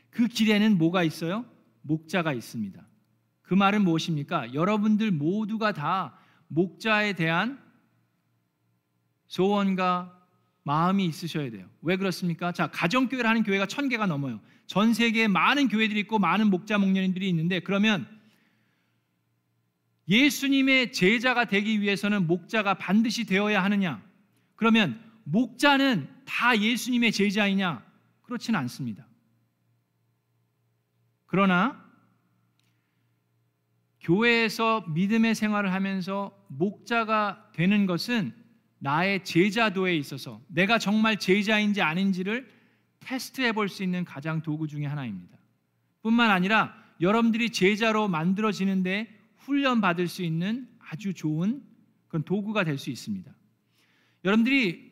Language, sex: Korean, male